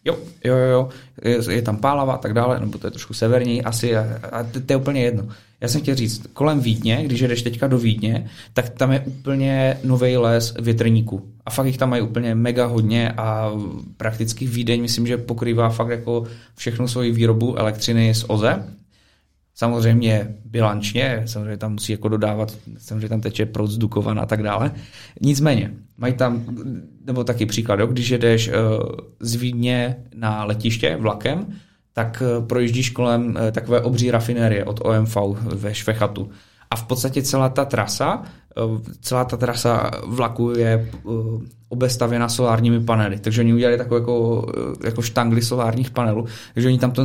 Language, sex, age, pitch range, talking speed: Czech, male, 20-39, 110-125 Hz, 165 wpm